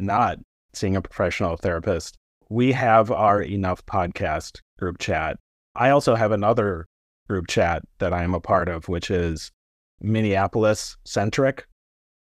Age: 30-49